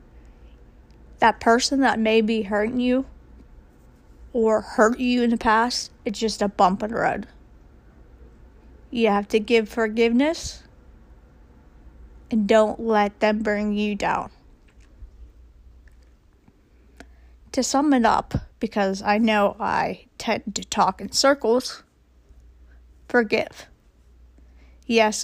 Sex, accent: female, American